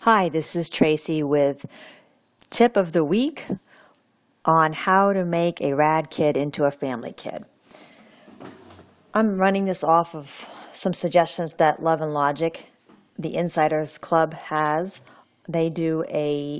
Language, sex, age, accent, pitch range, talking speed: English, female, 40-59, American, 150-180 Hz, 135 wpm